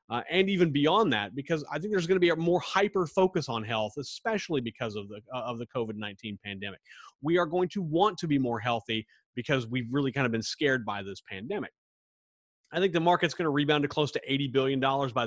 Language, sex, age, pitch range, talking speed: English, male, 30-49, 125-175 Hz, 225 wpm